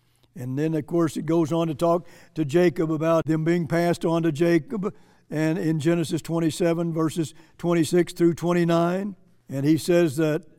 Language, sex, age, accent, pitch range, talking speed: English, male, 60-79, American, 150-185 Hz, 170 wpm